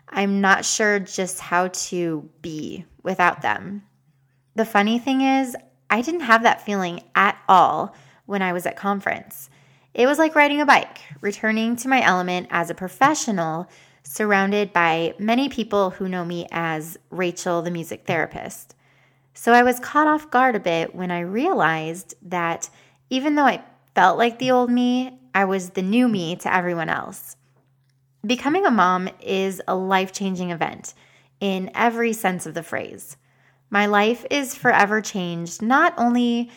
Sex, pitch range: female, 175-230 Hz